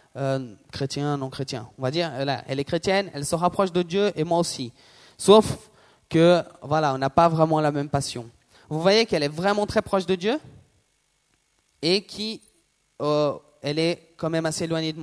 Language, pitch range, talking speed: French, 145-185 Hz, 180 wpm